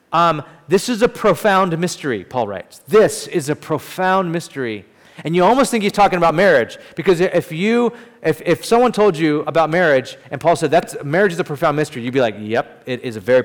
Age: 30-49